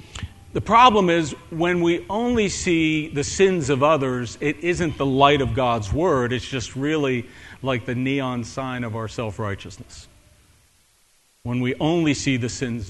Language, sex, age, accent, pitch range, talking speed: English, male, 50-69, American, 115-160 Hz, 160 wpm